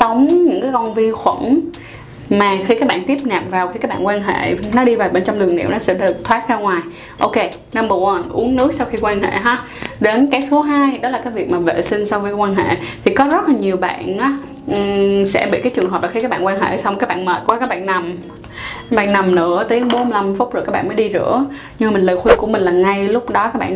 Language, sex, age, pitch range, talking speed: Vietnamese, female, 20-39, 195-270 Hz, 275 wpm